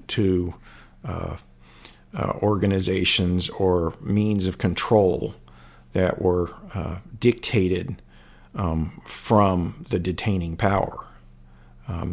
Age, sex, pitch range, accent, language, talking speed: 50-69, male, 80-100 Hz, American, English, 90 wpm